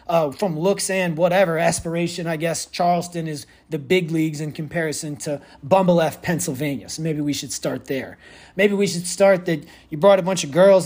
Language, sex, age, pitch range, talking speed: English, male, 30-49, 140-180 Hz, 195 wpm